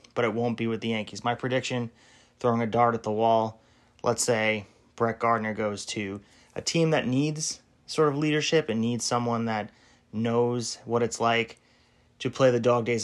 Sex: male